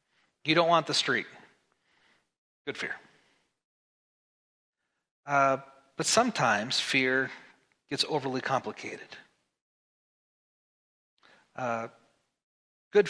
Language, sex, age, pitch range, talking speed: English, male, 30-49, 140-225 Hz, 75 wpm